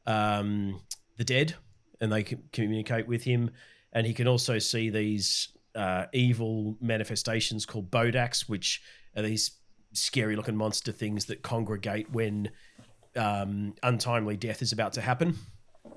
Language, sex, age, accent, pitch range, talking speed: English, male, 40-59, Australian, 110-125 Hz, 140 wpm